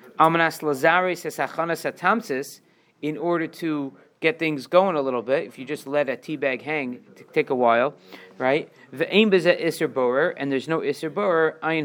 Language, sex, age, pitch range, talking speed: English, male, 40-59, 115-155 Hz, 160 wpm